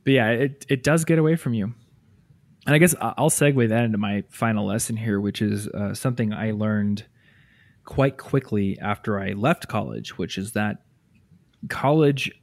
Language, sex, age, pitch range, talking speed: English, male, 20-39, 105-130 Hz, 175 wpm